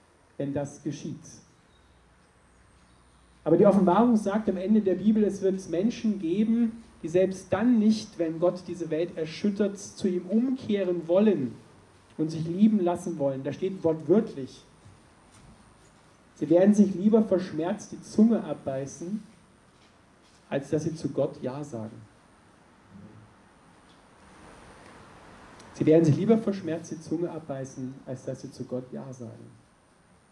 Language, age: German, 40-59